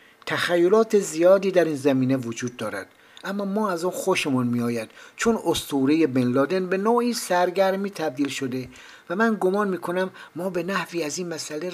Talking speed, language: 170 wpm, Persian